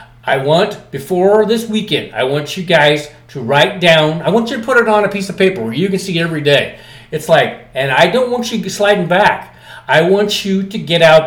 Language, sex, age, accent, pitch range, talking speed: English, male, 40-59, American, 145-205 Hz, 235 wpm